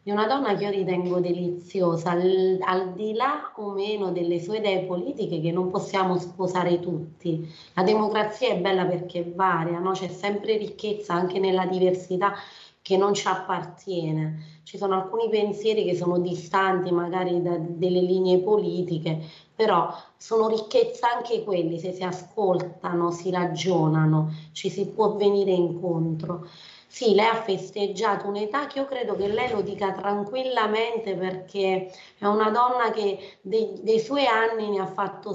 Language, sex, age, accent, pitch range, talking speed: Italian, female, 30-49, native, 180-215 Hz, 155 wpm